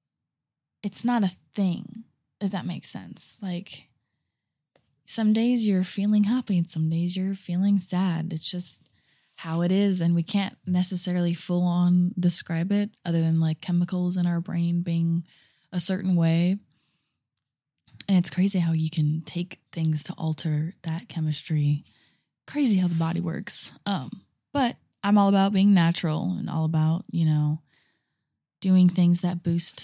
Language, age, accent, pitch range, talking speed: English, 20-39, American, 160-185 Hz, 155 wpm